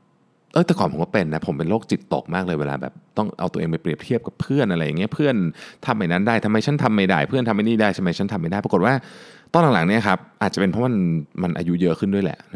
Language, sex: Thai, male